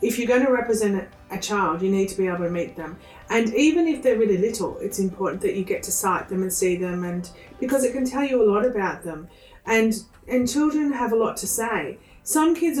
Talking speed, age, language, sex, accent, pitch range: 245 wpm, 40-59, English, female, Australian, 185-225 Hz